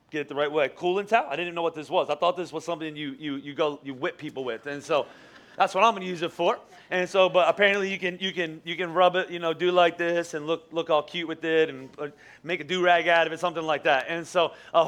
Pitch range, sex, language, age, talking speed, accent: 170-210 Hz, male, English, 30-49, 300 wpm, American